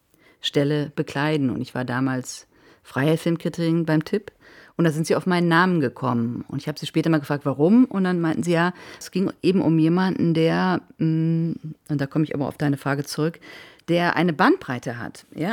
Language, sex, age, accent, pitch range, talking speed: German, female, 40-59, German, 150-180 Hz, 195 wpm